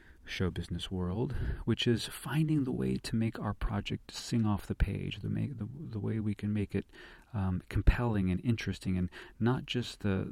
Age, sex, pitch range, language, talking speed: 30-49, male, 95-115 Hz, English, 185 wpm